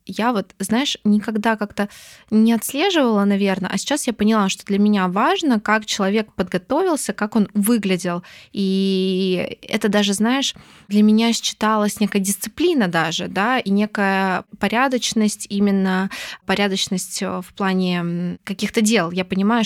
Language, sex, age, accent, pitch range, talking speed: Russian, female, 20-39, native, 190-220 Hz, 135 wpm